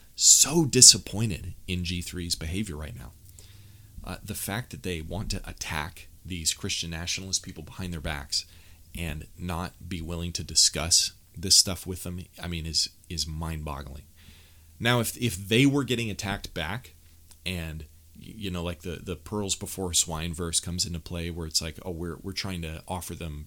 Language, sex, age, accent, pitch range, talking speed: English, male, 30-49, American, 85-110 Hz, 175 wpm